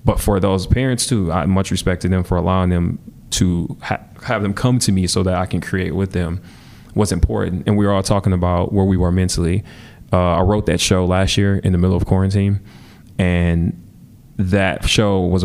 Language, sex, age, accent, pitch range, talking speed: English, male, 20-39, American, 90-100 Hz, 210 wpm